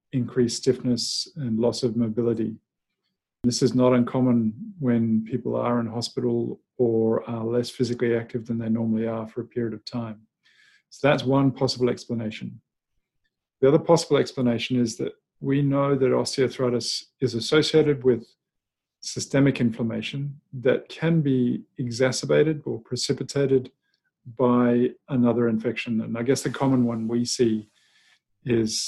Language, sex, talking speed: English, male, 140 wpm